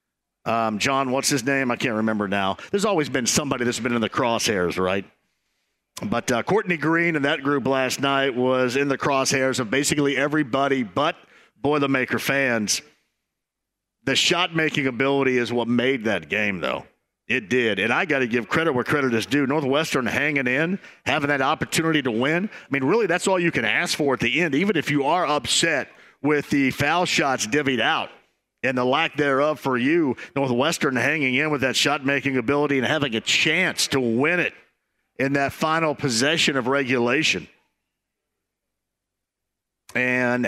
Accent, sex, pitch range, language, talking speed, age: American, male, 125-155 Hz, English, 175 wpm, 50-69